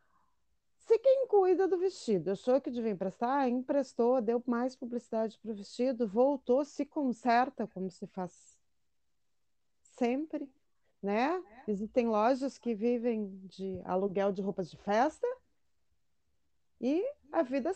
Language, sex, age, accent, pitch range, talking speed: Portuguese, female, 40-59, Brazilian, 175-250 Hz, 120 wpm